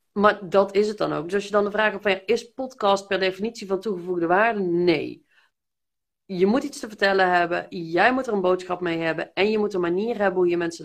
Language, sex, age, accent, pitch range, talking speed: Dutch, female, 40-59, Dutch, 185-235 Hz, 245 wpm